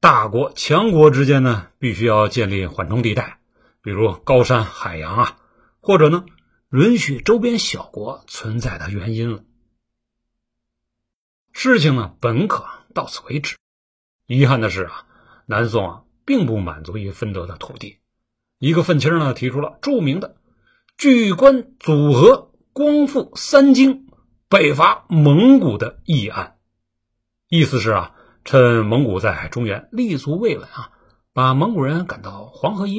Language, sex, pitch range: Chinese, male, 115-175 Hz